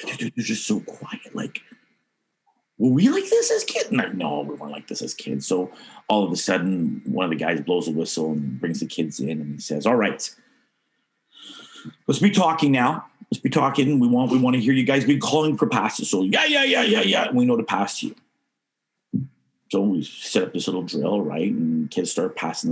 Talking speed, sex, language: 215 wpm, male, English